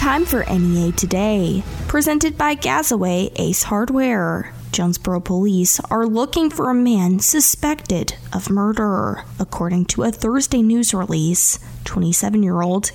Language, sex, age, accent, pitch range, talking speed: English, female, 20-39, American, 185-260 Hz, 120 wpm